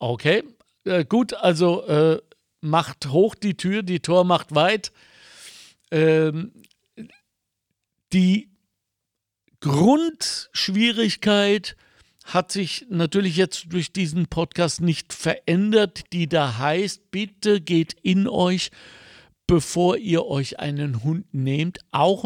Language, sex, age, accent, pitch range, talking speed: German, male, 60-79, German, 140-195 Hz, 105 wpm